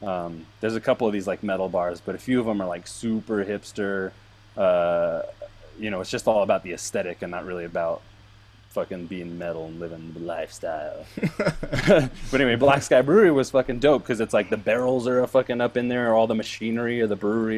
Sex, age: male, 20-39